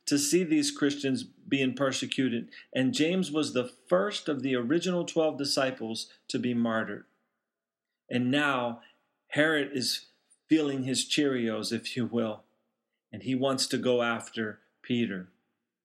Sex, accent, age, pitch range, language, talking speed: male, American, 40-59, 120-155 Hz, English, 135 wpm